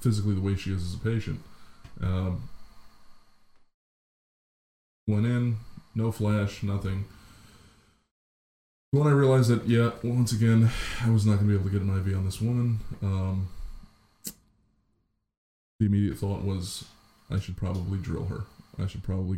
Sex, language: male, English